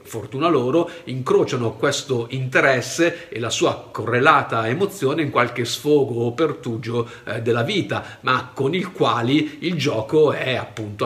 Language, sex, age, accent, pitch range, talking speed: Italian, male, 50-69, native, 130-170 Hz, 135 wpm